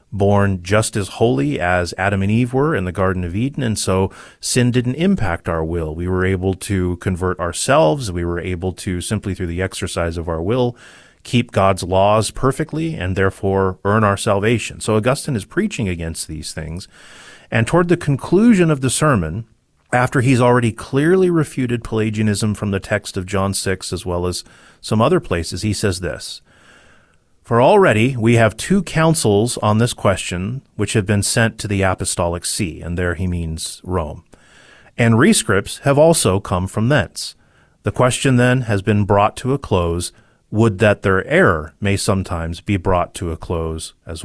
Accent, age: American, 30-49